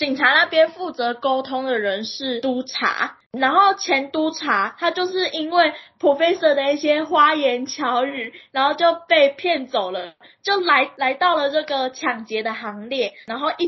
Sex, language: female, Chinese